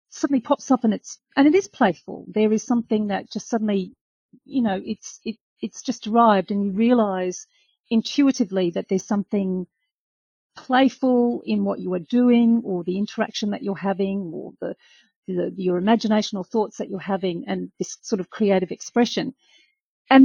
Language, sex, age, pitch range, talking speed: English, female, 40-59, 195-245 Hz, 170 wpm